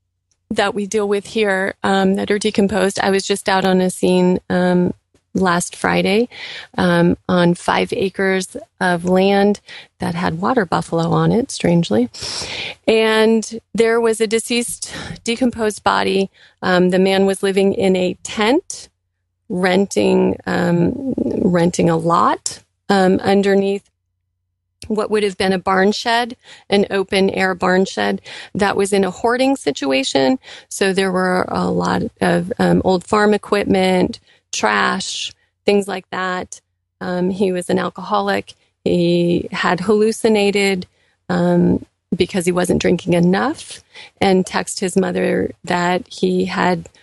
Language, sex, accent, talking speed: English, female, American, 135 wpm